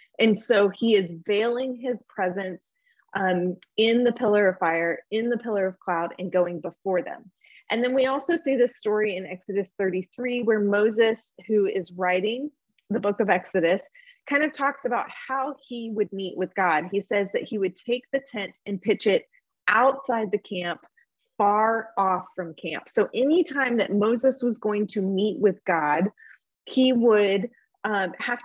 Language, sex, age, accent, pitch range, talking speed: English, female, 30-49, American, 185-245 Hz, 175 wpm